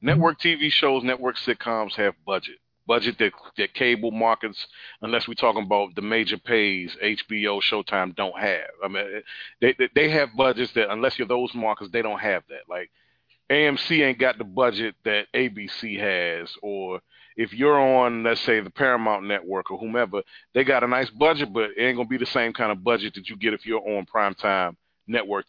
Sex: male